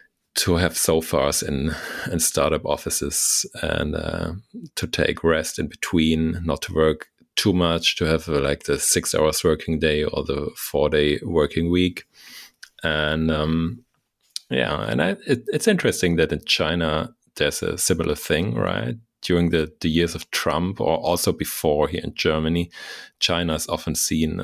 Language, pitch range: German, 80-90 Hz